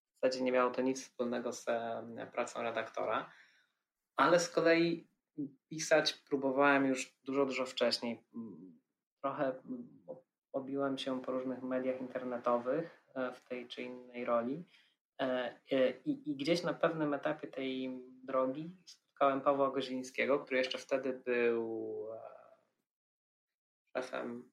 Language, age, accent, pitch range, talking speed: Polish, 20-39, native, 125-140 Hz, 115 wpm